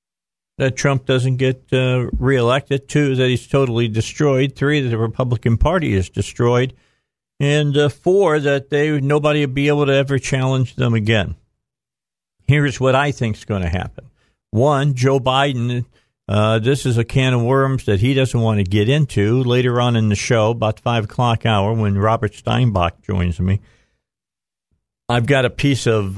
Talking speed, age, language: 175 wpm, 50-69, English